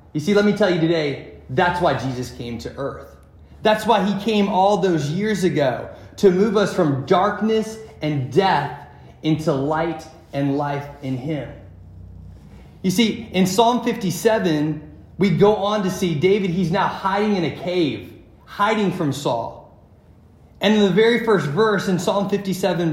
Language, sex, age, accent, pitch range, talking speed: English, male, 30-49, American, 140-200 Hz, 165 wpm